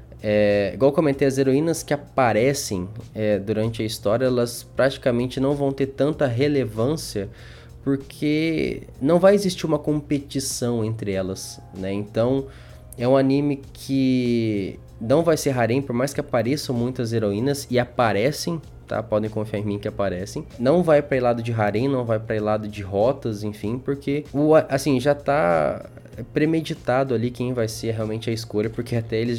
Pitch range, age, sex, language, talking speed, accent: 110-135 Hz, 20-39, male, Portuguese, 170 wpm, Brazilian